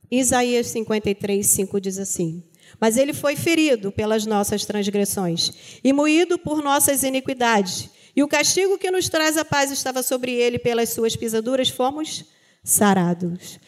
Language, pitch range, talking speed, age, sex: Portuguese, 200-275 Hz, 145 wpm, 40-59, female